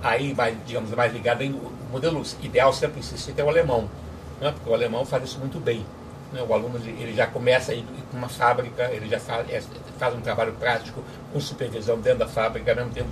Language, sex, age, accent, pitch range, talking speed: Portuguese, male, 60-79, Brazilian, 125-160 Hz, 220 wpm